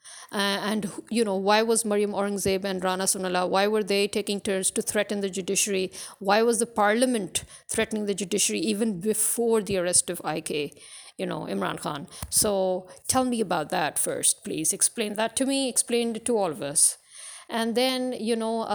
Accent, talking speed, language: Indian, 185 wpm, English